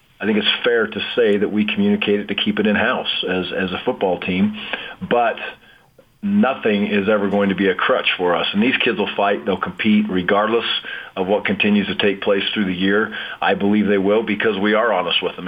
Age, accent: 40-59, American